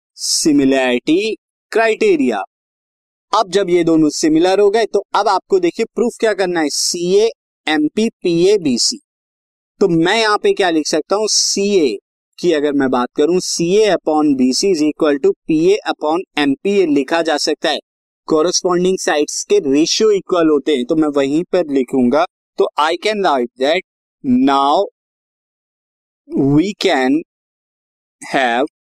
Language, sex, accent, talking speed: Hindi, male, native, 145 wpm